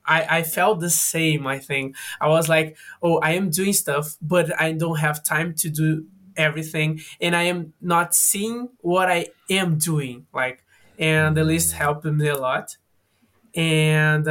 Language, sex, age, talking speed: English, male, 20-39, 170 wpm